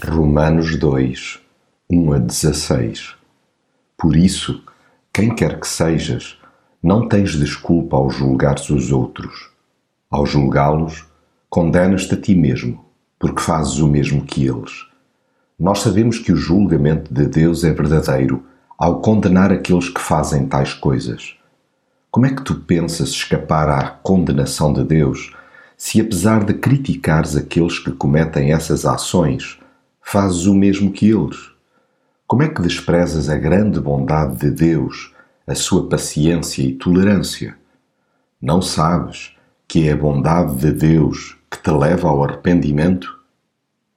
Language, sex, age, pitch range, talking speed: Portuguese, male, 50-69, 75-90 Hz, 130 wpm